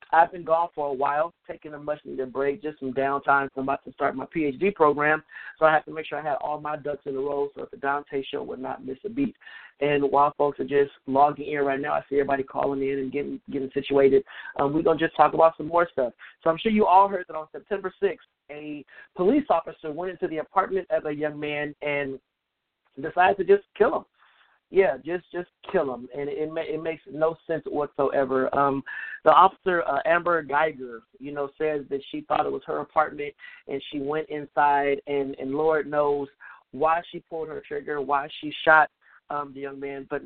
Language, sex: English, male